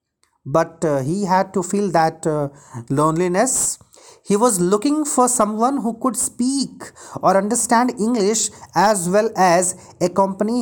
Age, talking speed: 40-59, 135 wpm